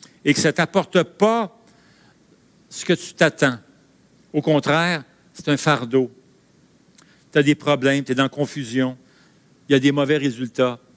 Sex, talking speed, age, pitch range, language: male, 160 wpm, 60-79, 120-155 Hz, French